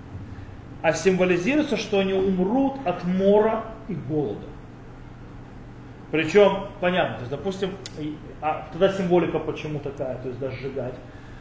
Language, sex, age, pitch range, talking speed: Russian, male, 30-49, 140-200 Hz, 120 wpm